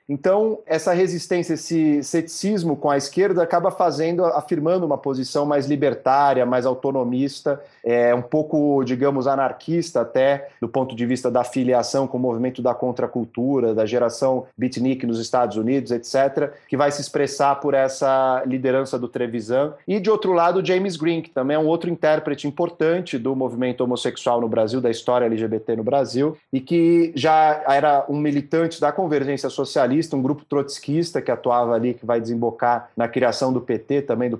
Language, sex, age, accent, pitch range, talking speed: Portuguese, male, 30-49, Brazilian, 125-150 Hz, 170 wpm